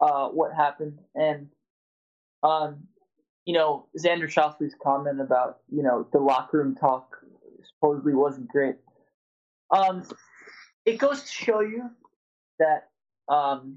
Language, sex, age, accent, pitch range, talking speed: English, male, 20-39, American, 150-195 Hz, 120 wpm